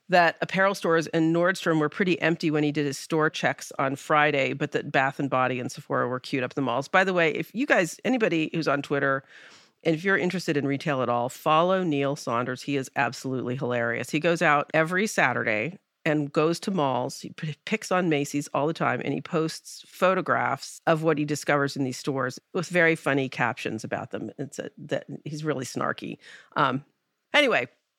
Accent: American